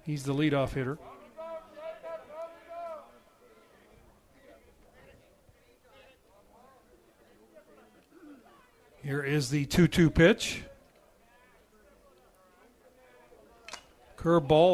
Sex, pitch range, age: male, 155-220 Hz, 40-59